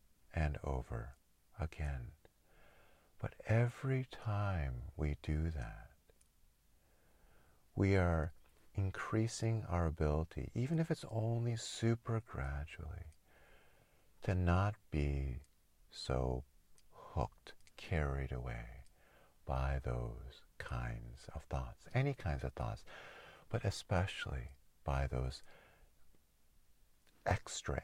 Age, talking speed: 50-69, 90 wpm